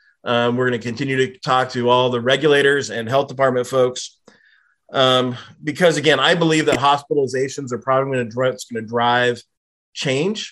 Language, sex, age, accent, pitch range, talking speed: English, male, 30-49, American, 120-145 Hz, 185 wpm